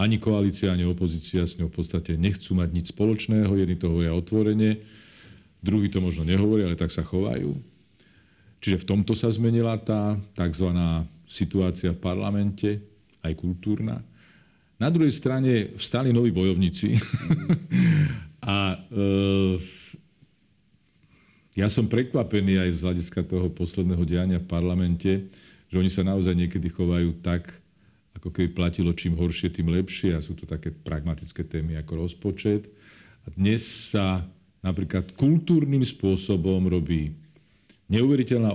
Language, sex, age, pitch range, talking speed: Slovak, male, 50-69, 85-105 Hz, 130 wpm